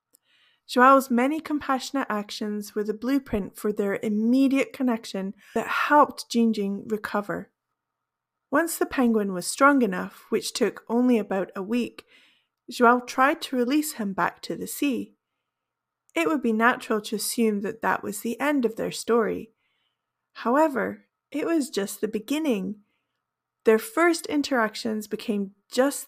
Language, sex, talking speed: English, female, 140 wpm